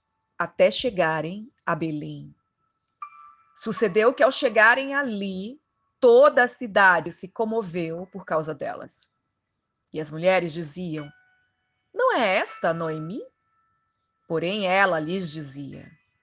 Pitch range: 170-245 Hz